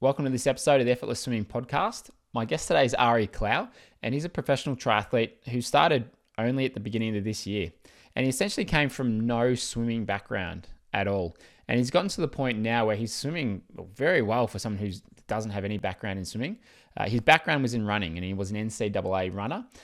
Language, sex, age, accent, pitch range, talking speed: English, male, 20-39, Australian, 100-125 Hz, 220 wpm